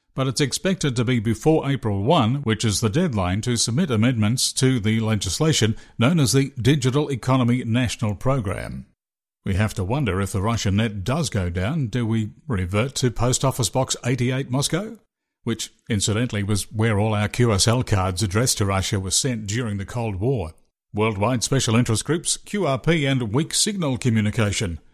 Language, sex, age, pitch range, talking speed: English, male, 50-69, 105-140 Hz, 170 wpm